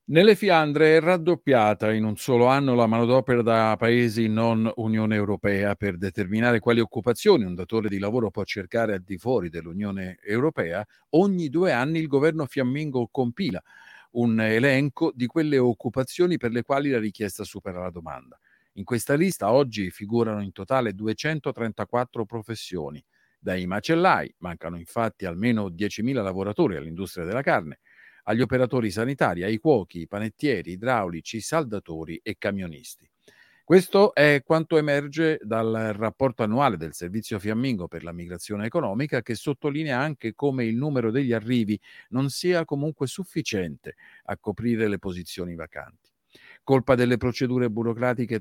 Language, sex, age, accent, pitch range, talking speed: Italian, male, 50-69, native, 105-140 Hz, 145 wpm